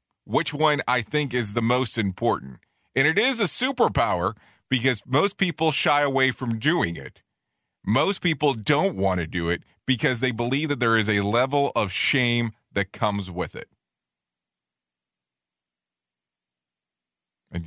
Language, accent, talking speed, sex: English, American, 145 wpm, male